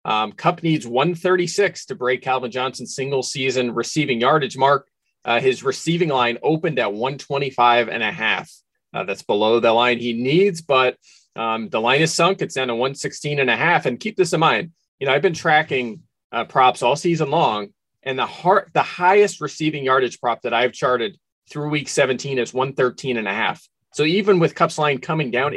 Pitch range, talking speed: 125-170 Hz, 195 wpm